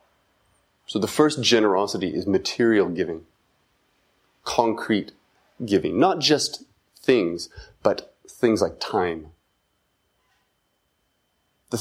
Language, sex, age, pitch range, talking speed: English, male, 30-49, 85-130 Hz, 85 wpm